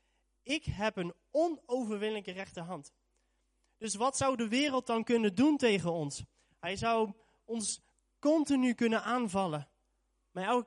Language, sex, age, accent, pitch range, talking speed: Dutch, male, 20-39, Dutch, 165-230 Hz, 135 wpm